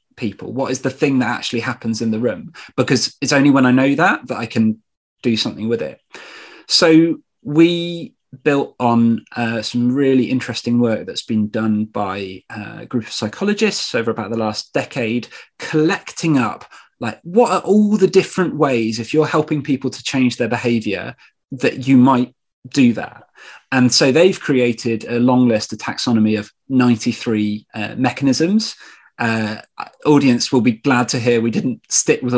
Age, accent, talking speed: 30-49, British, 175 wpm